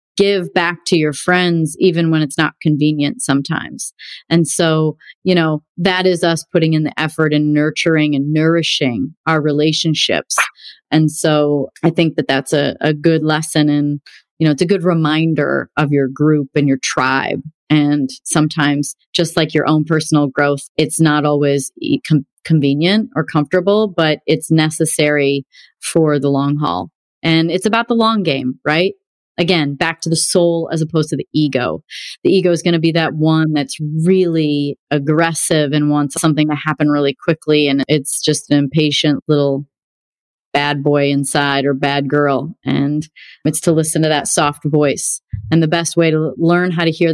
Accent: American